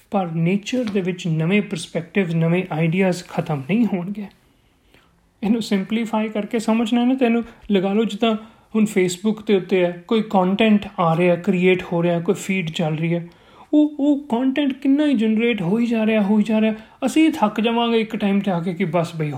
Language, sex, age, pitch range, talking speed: Punjabi, male, 30-49, 175-240 Hz, 190 wpm